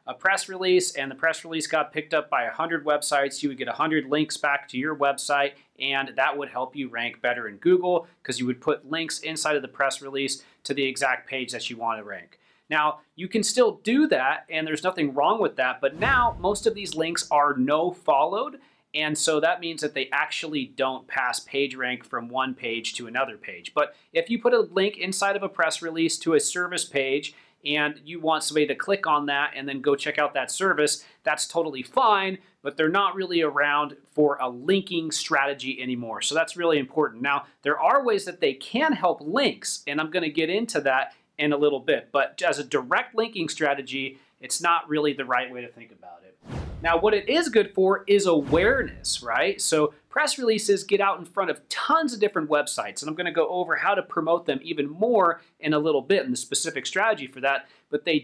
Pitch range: 140-190 Hz